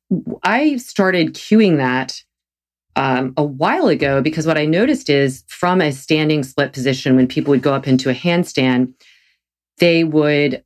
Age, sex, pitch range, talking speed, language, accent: 40-59, female, 130-165 Hz, 160 wpm, English, American